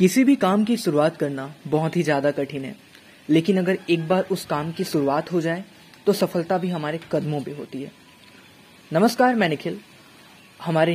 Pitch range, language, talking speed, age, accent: 150-185 Hz, English, 180 wpm, 20-39, Indian